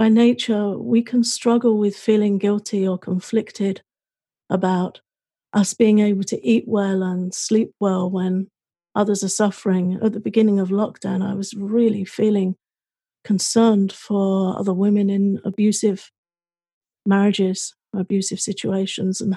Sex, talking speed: female, 135 wpm